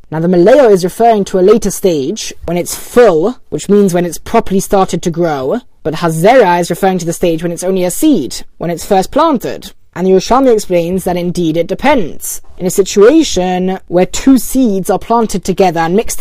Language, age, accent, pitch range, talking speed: English, 20-39, British, 180-225 Hz, 205 wpm